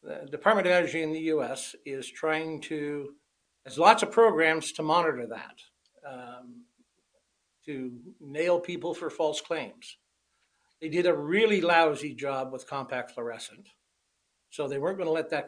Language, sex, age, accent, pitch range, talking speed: English, male, 60-79, American, 140-180 Hz, 155 wpm